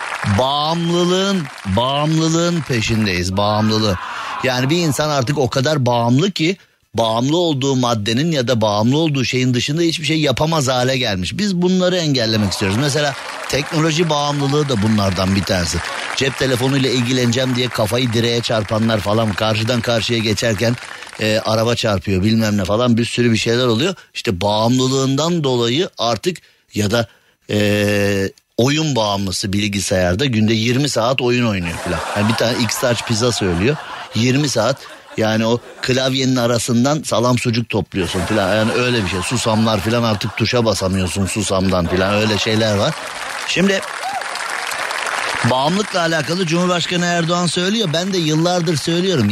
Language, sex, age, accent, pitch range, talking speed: Turkish, male, 50-69, native, 110-155 Hz, 140 wpm